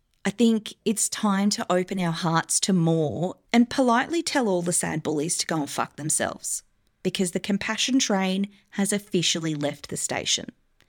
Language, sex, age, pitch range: English, female, 30-49, 170-230 Hz